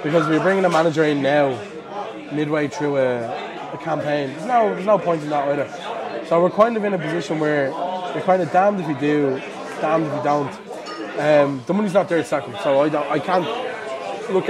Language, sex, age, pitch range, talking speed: English, male, 20-39, 150-185 Hz, 220 wpm